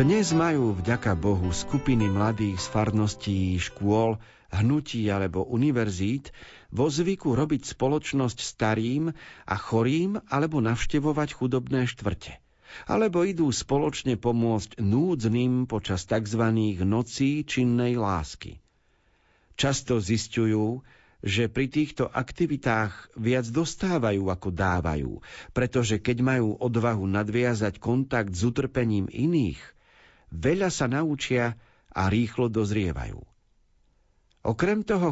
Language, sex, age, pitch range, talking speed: Slovak, male, 50-69, 105-135 Hz, 105 wpm